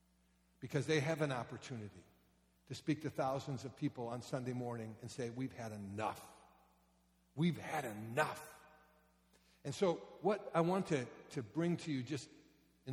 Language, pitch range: English, 110-150 Hz